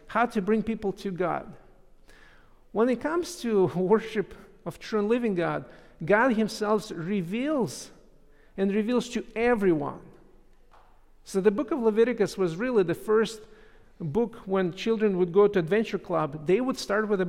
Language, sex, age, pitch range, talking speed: English, male, 50-69, 175-220 Hz, 155 wpm